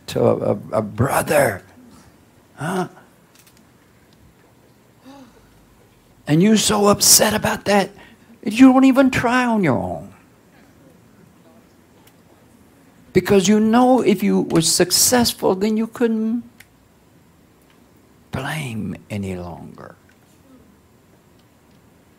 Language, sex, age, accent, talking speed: English, male, 60-79, American, 85 wpm